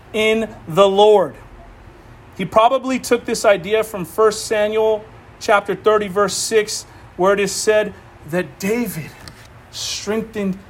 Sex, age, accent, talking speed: male, 40-59, American, 125 wpm